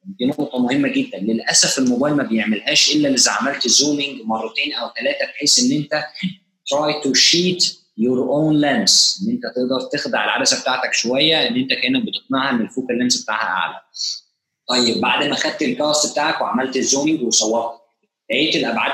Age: 20-39